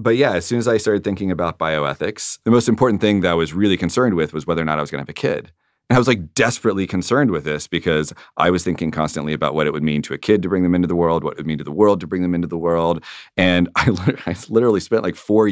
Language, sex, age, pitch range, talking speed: English, male, 30-49, 80-100 Hz, 300 wpm